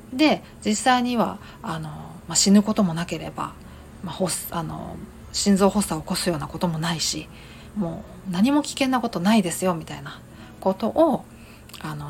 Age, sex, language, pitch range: 40-59, female, Japanese, 180-240 Hz